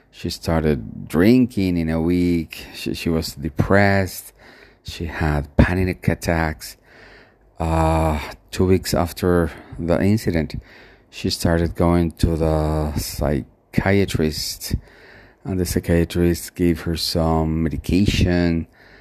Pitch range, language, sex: 80-95 Hz, English, male